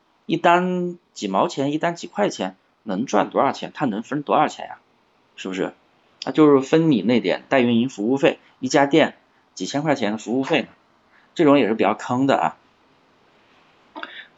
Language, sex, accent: Chinese, male, native